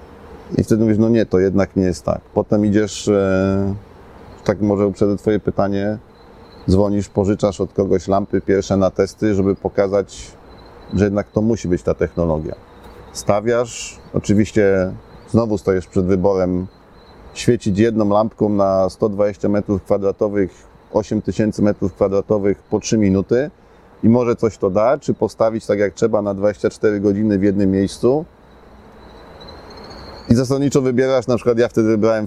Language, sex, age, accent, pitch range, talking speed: Polish, male, 40-59, native, 100-115 Hz, 145 wpm